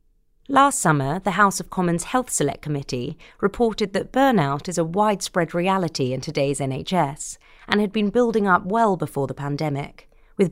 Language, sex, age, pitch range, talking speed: English, female, 30-49, 150-200 Hz, 165 wpm